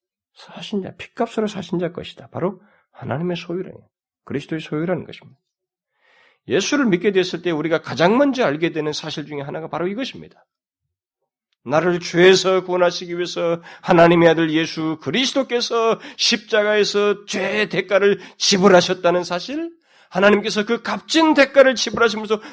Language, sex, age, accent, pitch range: Korean, male, 40-59, native, 155-230 Hz